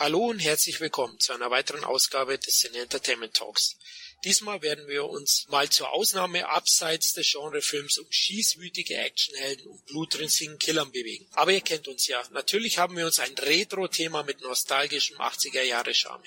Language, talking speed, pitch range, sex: German, 155 wpm, 140-200 Hz, male